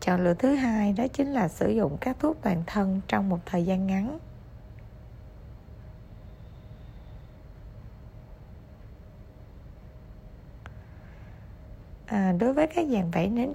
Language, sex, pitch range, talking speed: Vietnamese, female, 175-215 Hz, 110 wpm